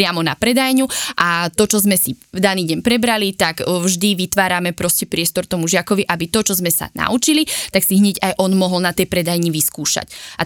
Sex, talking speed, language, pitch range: female, 205 wpm, Slovak, 175-210 Hz